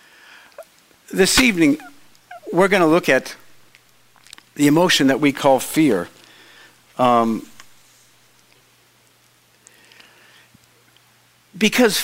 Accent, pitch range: American, 130-180 Hz